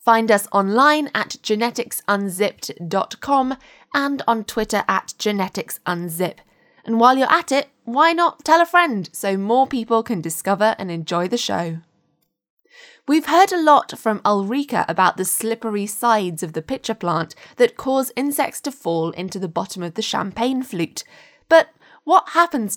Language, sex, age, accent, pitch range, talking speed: English, female, 20-39, British, 185-265 Hz, 155 wpm